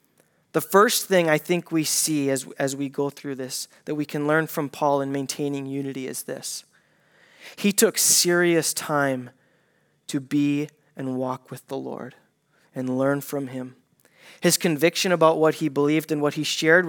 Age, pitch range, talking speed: 20-39, 145-175 Hz, 175 wpm